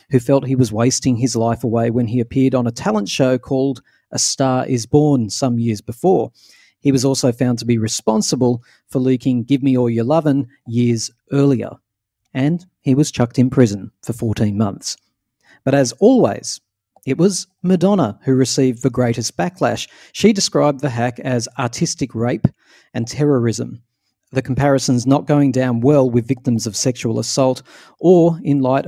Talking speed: 170 wpm